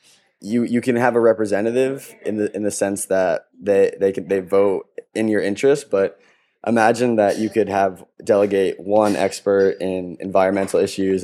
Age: 20-39